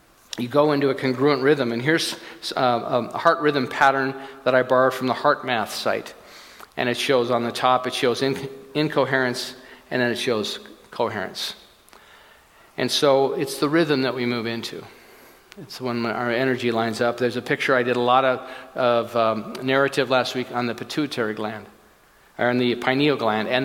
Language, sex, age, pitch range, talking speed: English, male, 50-69, 120-145 Hz, 185 wpm